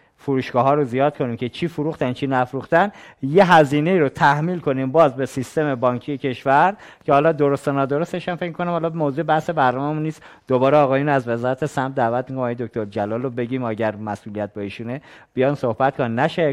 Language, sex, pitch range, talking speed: Persian, male, 120-155 Hz, 190 wpm